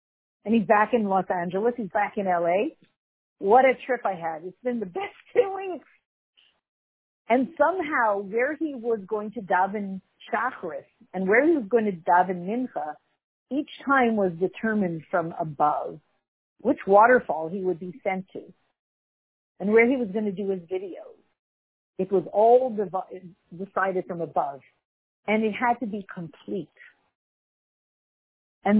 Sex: female